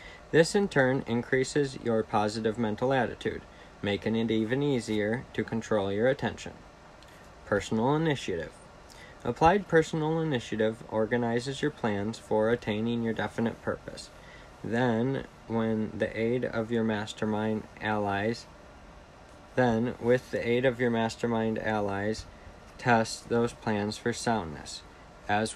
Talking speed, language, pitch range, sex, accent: 120 wpm, English, 100-120 Hz, male, American